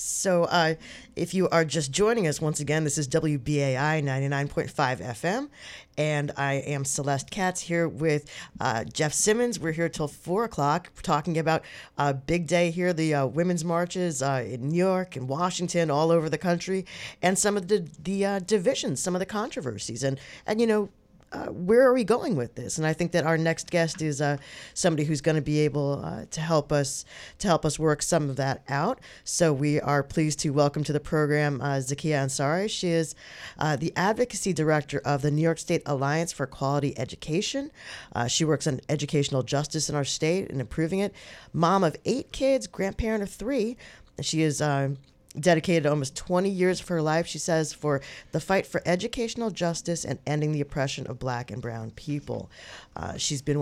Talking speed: 195 wpm